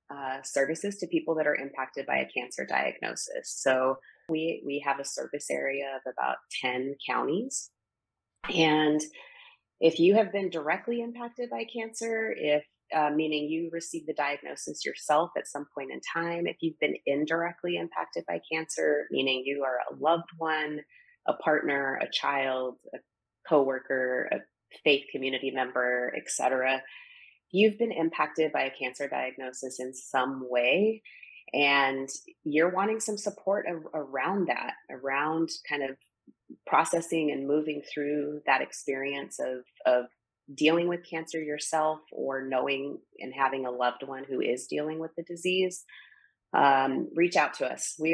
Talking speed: 150 wpm